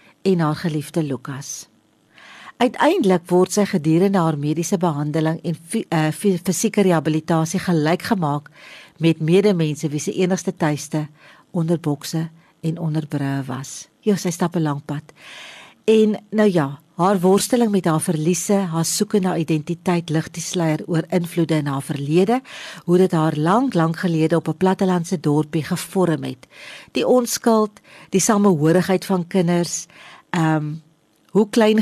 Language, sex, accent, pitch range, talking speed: English, female, Austrian, 160-195 Hz, 140 wpm